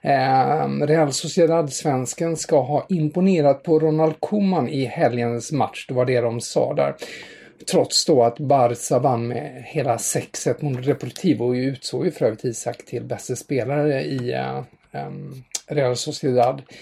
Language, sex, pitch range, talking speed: English, male, 130-170 Hz, 145 wpm